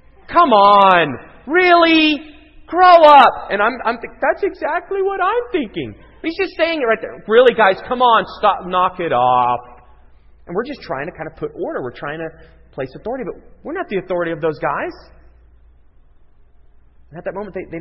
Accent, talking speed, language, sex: American, 190 wpm, English, male